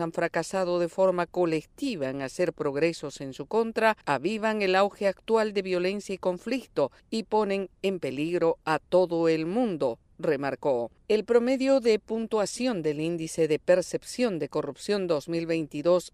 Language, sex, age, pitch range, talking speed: Spanish, female, 50-69, 155-220 Hz, 145 wpm